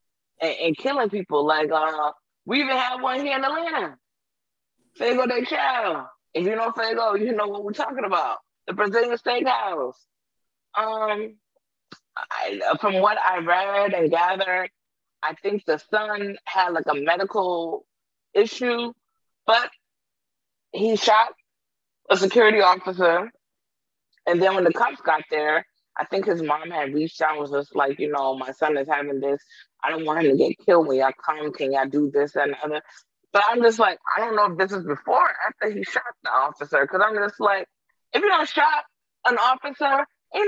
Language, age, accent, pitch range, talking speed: English, 20-39, American, 165-250 Hz, 180 wpm